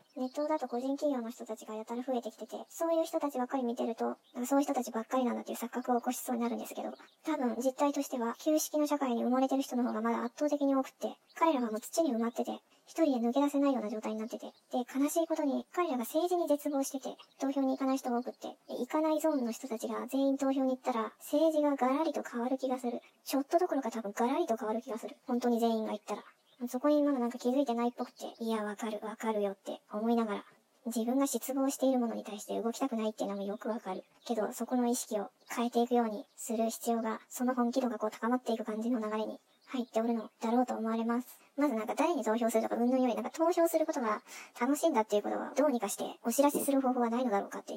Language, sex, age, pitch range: Japanese, male, 20-39, 225-275 Hz